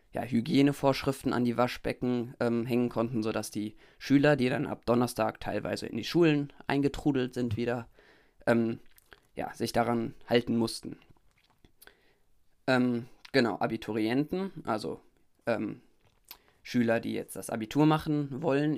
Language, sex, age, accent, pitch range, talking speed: German, male, 20-39, German, 110-130 Hz, 120 wpm